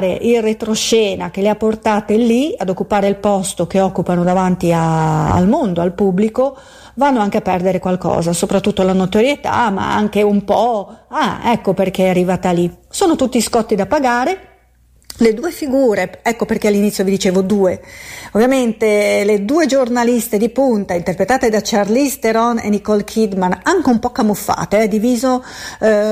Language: Italian